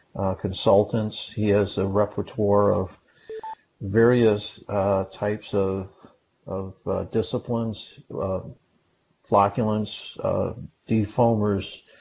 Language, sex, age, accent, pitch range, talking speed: English, male, 50-69, American, 95-105 Hz, 90 wpm